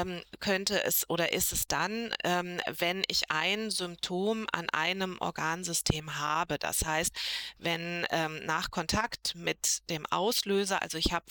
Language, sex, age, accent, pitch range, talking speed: German, female, 30-49, German, 155-195 Hz, 135 wpm